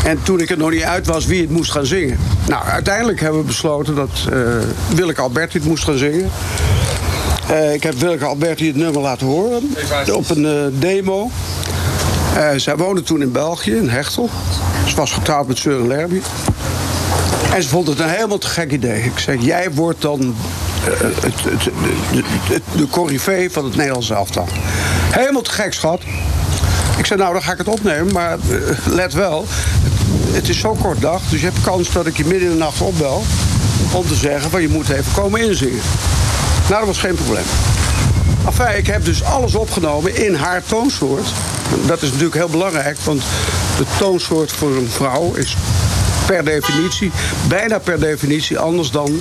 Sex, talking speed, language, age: male, 185 wpm, Dutch, 60-79